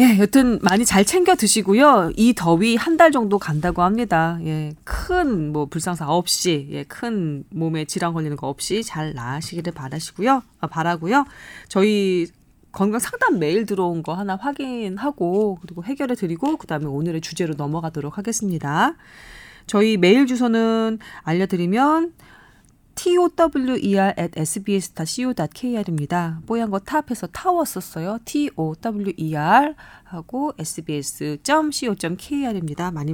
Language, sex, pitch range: Korean, female, 160-235 Hz